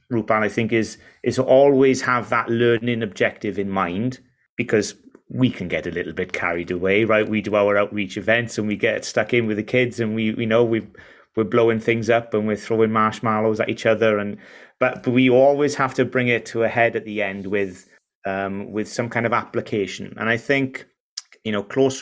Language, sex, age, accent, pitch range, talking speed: English, male, 30-49, British, 105-130 Hz, 220 wpm